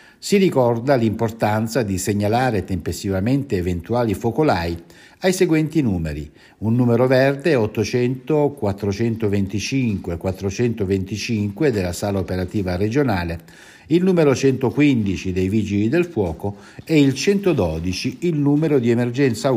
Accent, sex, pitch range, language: native, male, 95-125 Hz, Italian